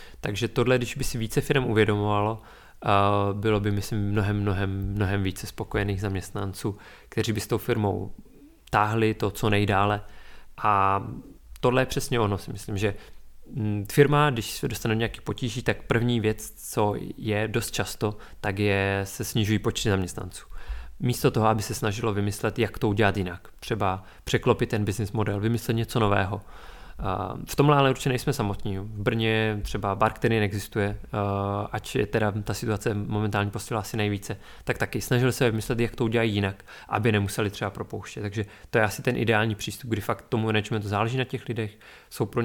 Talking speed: 175 wpm